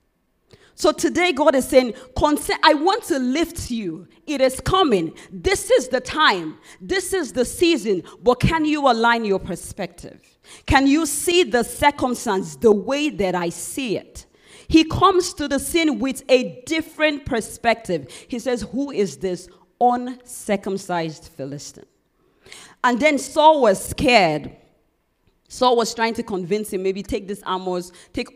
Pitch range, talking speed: 180-270 Hz, 150 wpm